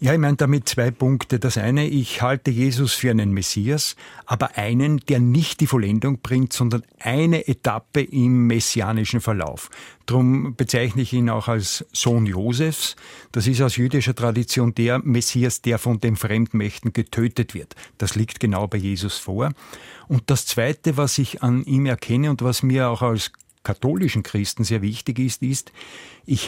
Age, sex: 50-69, male